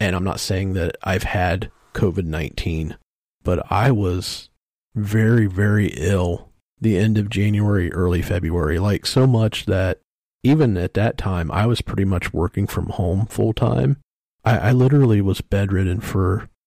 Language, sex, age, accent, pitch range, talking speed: English, male, 40-59, American, 90-110 Hz, 155 wpm